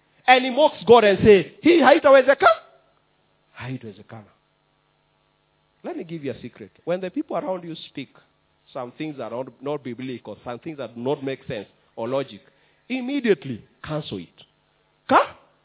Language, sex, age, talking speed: English, male, 40-59, 170 wpm